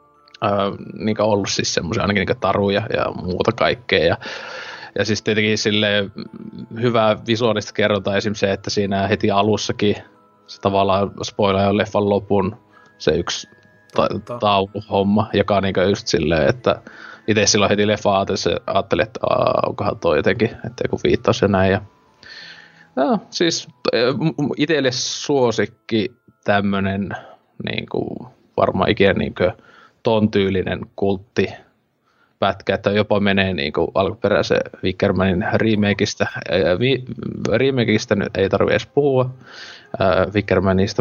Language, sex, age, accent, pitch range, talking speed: Finnish, male, 20-39, native, 100-120 Hz, 130 wpm